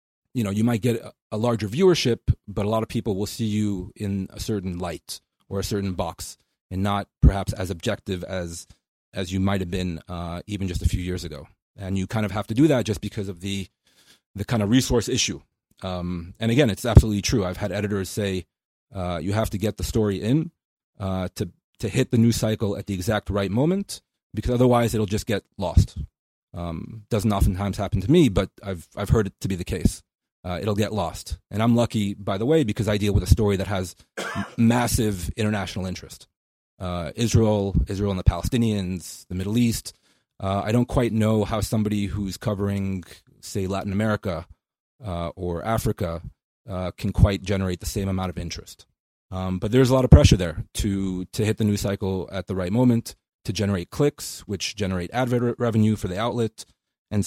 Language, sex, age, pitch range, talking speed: English, male, 30-49, 95-110 Hz, 200 wpm